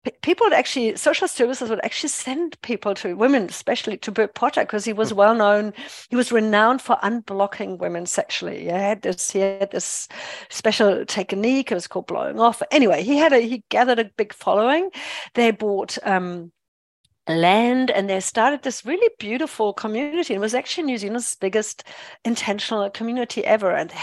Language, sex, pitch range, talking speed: English, female, 205-250 Hz, 175 wpm